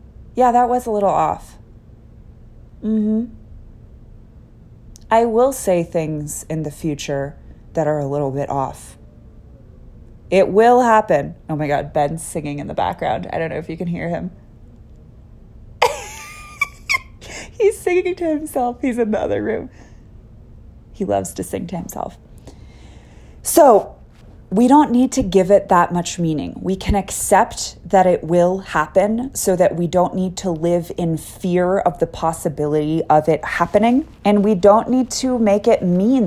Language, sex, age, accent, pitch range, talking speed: English, female, 30-49, American, 160-220 Hz, 155 wpm